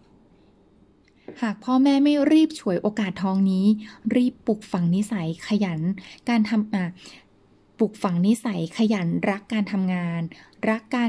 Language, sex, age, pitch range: Thai, female, 20-39, 180-225 Hz